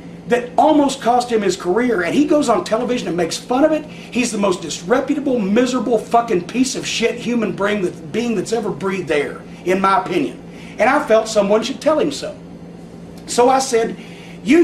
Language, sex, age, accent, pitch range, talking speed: English, male, 40-59, American, 195-270 Hz, 190 wpm